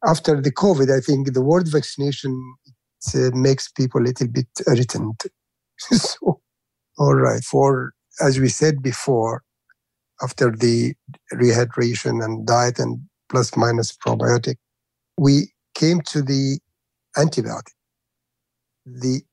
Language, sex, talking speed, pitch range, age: English, male, 120 wpm, 120-140 Hz, 60-79